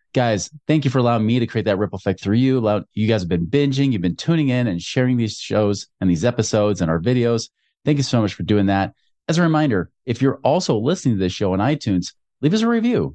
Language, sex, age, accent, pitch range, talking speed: English, male, 30-49, American, 105-145 Hz, 250 wpm